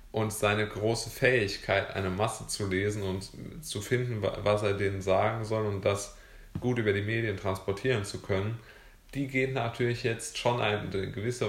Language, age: German, 20-39